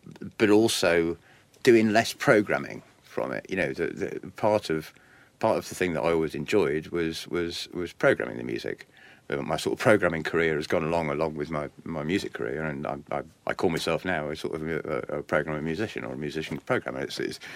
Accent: British